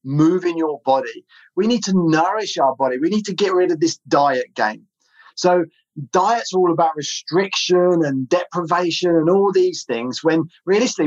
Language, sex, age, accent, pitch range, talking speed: English, male, 30-49, British, 135-175 Hz, 170 wpm